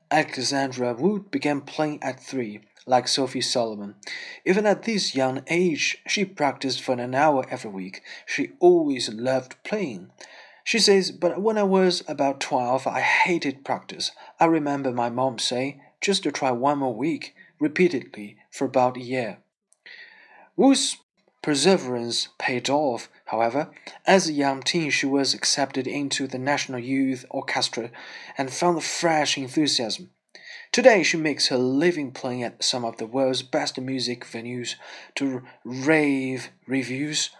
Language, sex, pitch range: Chinese, male, 130-175 Hz